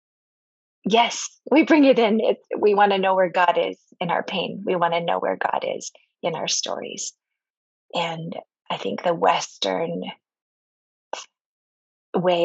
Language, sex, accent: English, female, American